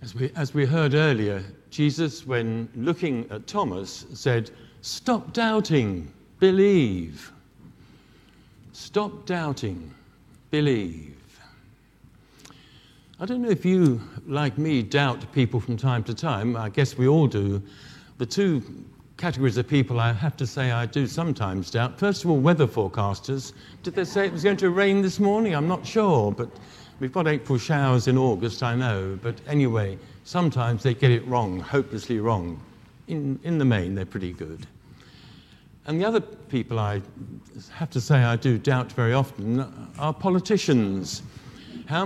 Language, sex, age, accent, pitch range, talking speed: English, male, 60-79, British, 110-150 Hz, 155 wpm